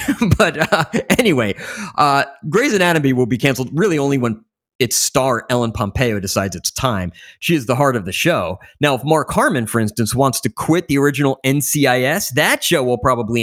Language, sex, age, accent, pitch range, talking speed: English, male, 30-49, American, 120-165 Hz, 190 wpm